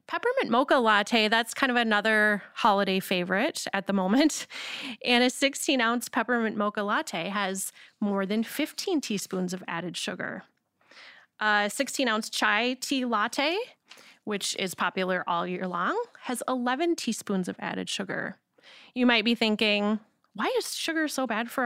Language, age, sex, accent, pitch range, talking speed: English, 30-49, female, American, 205-265 Hz, 145 wpm